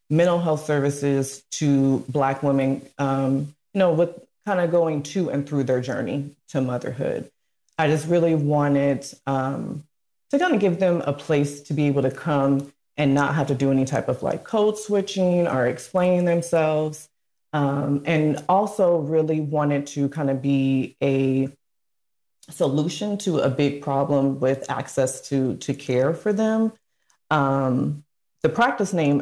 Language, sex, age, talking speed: English, female, 30-49, 160 wpm